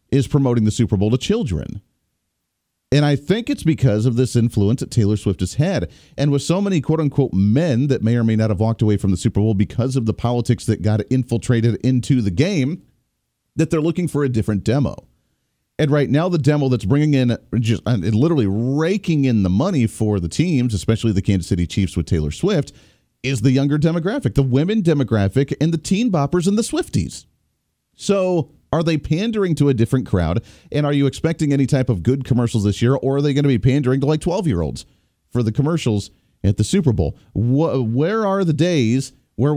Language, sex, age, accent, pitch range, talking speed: English, male, 40-59, American, 110-145 Hz, 205 wpm